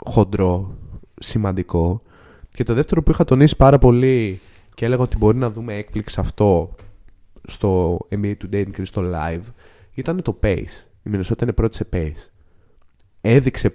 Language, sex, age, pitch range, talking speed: Greek, male, 20-39, 95-120 Hz, 150 wpm